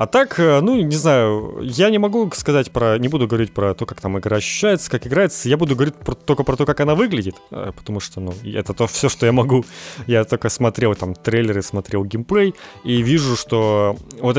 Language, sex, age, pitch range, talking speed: Ukrainian, male, 30-49, 110-150 Hz, 215 wpm